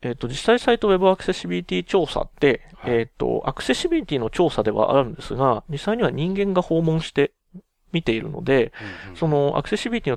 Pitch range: 120-180 Hz